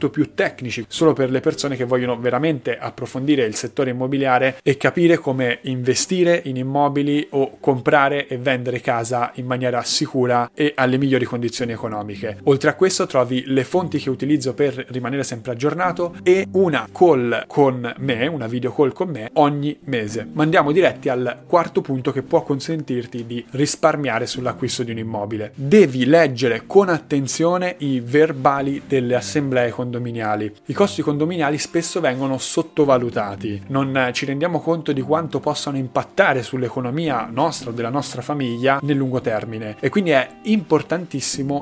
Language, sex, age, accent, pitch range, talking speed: Italian, male, 30-49, native, 125-150 Hz, 155 wpm